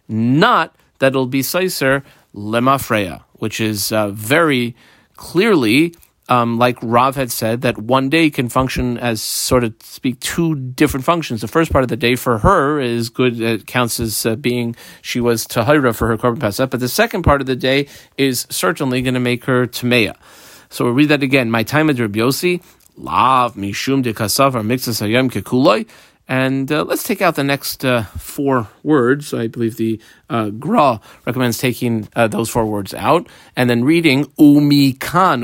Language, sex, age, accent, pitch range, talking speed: English, male, 40-59, American, 120-150 Hz, 180 wpm